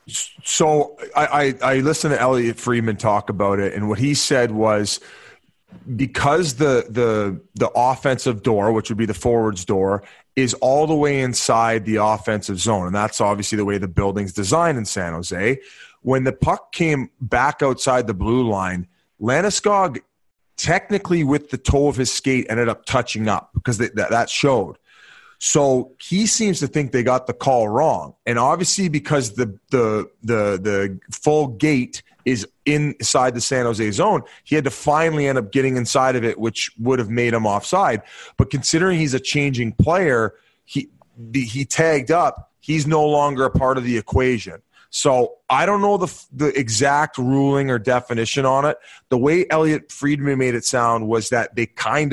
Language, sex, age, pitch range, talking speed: English, male, 30-49, 115-145 Hz, 180 wpm